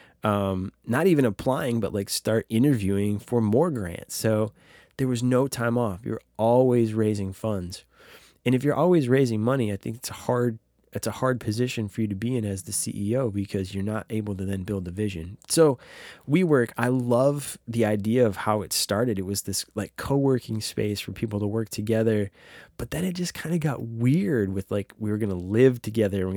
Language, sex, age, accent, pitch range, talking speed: English, male, 20-39, American, 100-120 Hz, 205 wpm